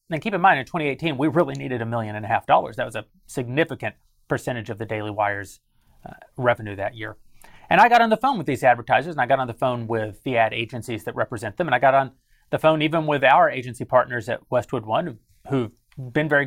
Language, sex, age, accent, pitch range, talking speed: English, male, 30-49, American, 120-155 Hz, 245 wpm